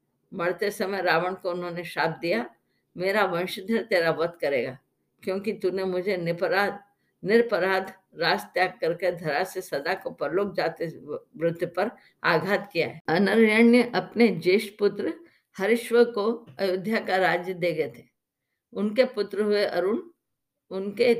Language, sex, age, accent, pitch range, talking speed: Hindi, female, 50-69, native, 185-220 Hz, 120 wpm